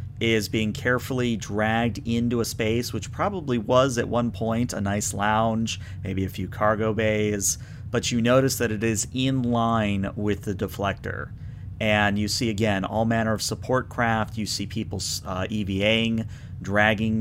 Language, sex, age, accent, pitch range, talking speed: English, male, 40-59, American, 100-120 Hz, 165 wpm